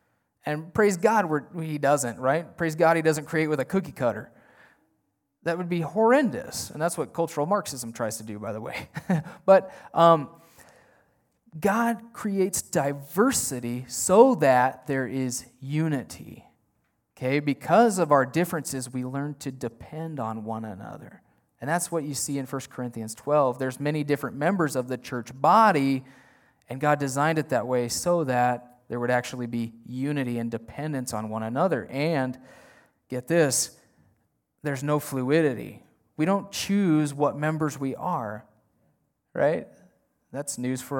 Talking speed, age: 150 wpm, 30-49